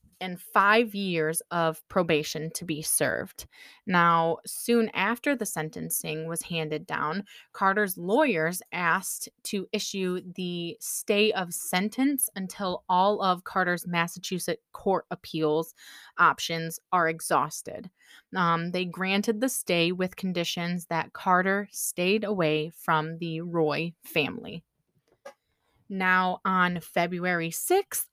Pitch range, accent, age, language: 170-210 Hz, American, 20-39, English